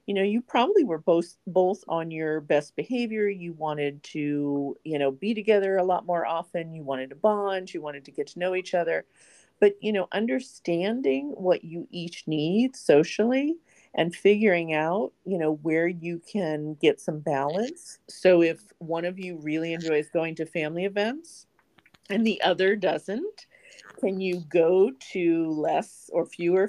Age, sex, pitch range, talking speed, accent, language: 40-59, female, 155-200 Hz, 170 wpm, American, English